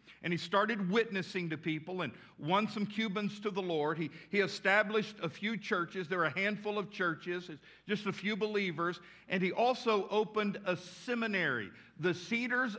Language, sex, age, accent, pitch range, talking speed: English, male, 50-69, American, 180-225 Hz, 175 wpm